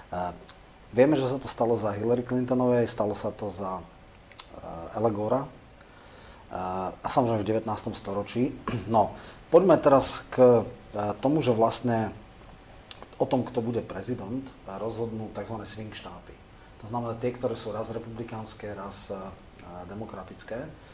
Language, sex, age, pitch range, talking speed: Slovak, male, 30-49, 100-120 Hz, 140 wpm